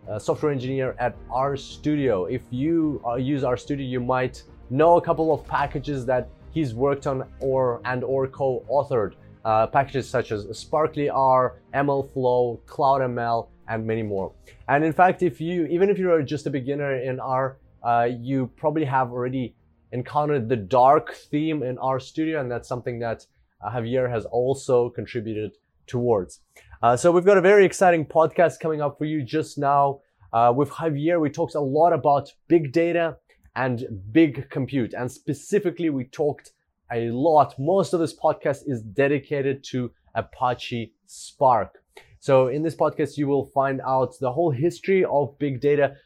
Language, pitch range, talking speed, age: English, 125-150 Hz, 165 wpm, 30-49